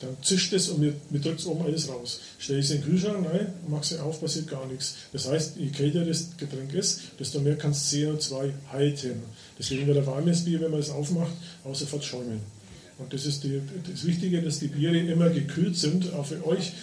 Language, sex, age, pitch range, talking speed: German, male, 40-59, 145-170 Hz, 225 wpm